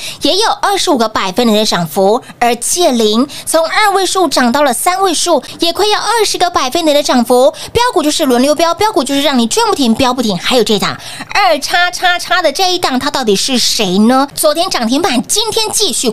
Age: 20-39